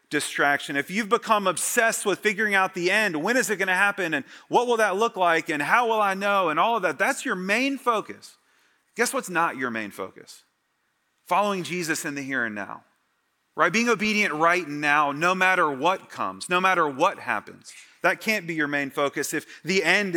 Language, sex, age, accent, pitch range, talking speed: English, male, 30-49, American, 135-195 Hz, 210 wpm